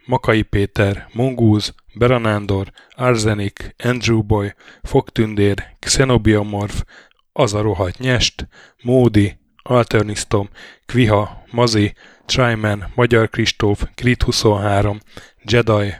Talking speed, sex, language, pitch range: 85 wpm, male, Hungarian, 100-120 Hz